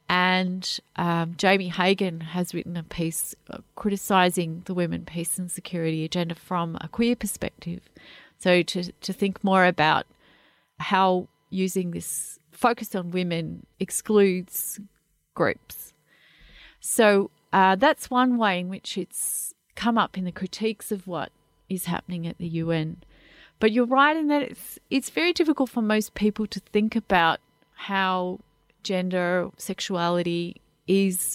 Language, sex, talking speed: English, female, 140 wpm